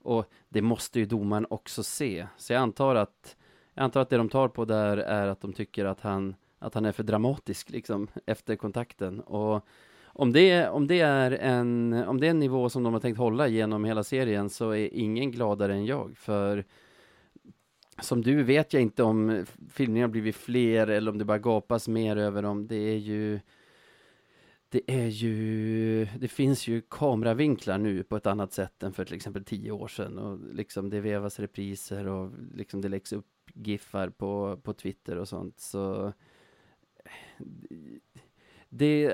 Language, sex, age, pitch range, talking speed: Swedish, male, 30-49, 100-120 Hz, 180 wpm